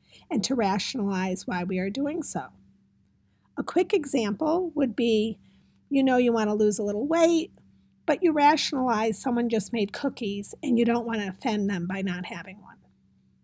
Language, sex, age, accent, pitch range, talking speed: English, female, 50-69, American, 185-290 Hz, 180 wpm